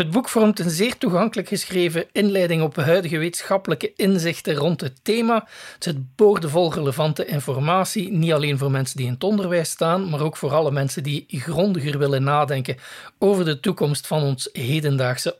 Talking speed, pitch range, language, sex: 170 wpm, 150-200 Hz, Dutch, male